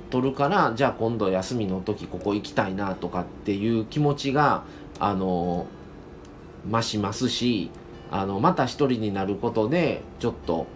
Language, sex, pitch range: Japanese, male, 95-130 Hz